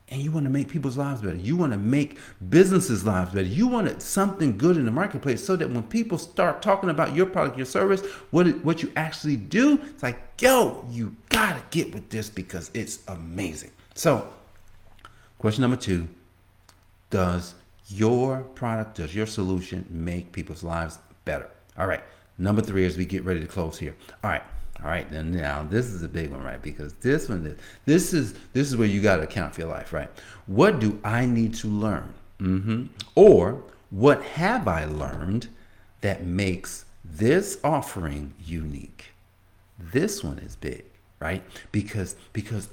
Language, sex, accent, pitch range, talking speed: English, male, American, 90-125 Hz, 180 wpm